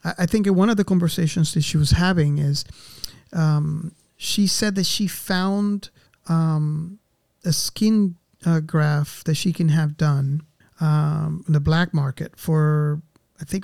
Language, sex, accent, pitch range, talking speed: English, male, American, 155-180 Hz, 155 wpm